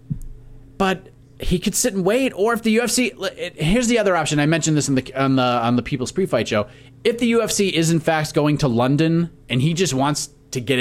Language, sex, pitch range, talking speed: English, male, 130-160 Hz, 230 wpm